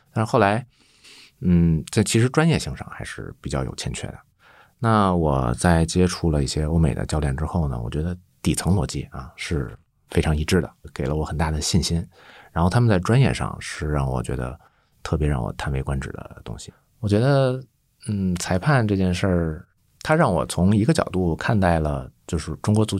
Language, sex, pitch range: Chinese, male, 75-105 Hz